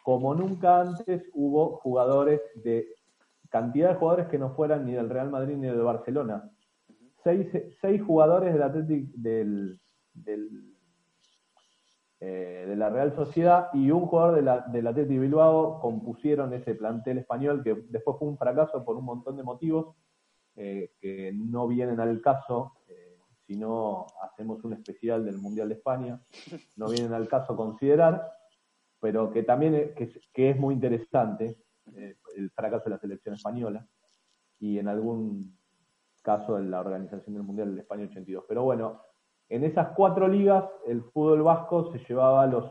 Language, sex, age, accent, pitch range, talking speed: Spanish, male, 40-59, Argentinian, 110-155 Hz, 160 wpm